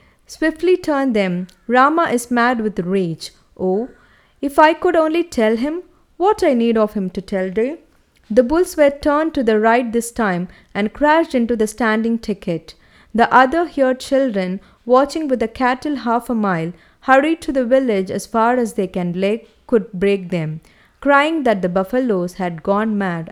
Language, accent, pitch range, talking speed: English, Indian, 190-270 Hz, 180 wpm